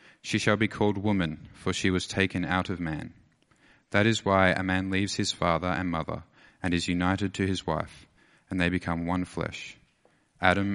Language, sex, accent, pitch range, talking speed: English, male, Australian, 90-110 Hz, 190 wpm